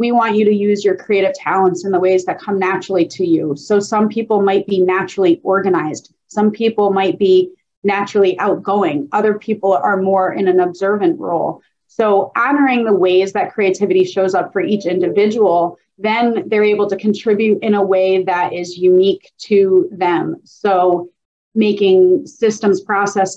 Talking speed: 165 wpm